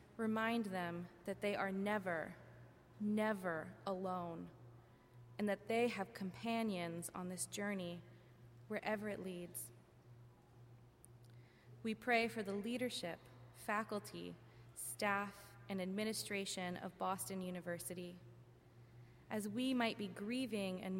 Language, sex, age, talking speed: English, female, 20-39, 105 wpm